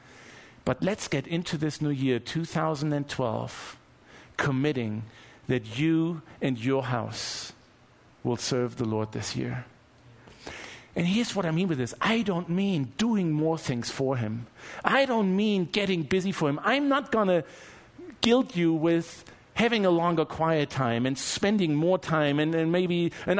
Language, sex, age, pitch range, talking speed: English, male, 50-69, 125-190 Hz, 160 wpm